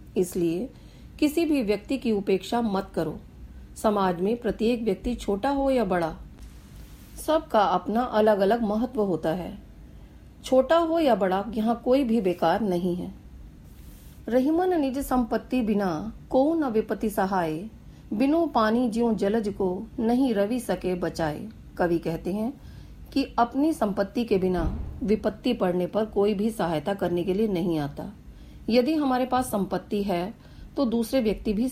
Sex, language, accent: female, Hindi, native